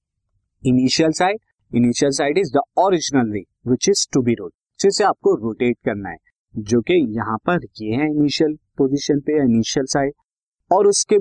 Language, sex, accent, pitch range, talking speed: Hindi, male, native, 125-170 Hz, 85 wpm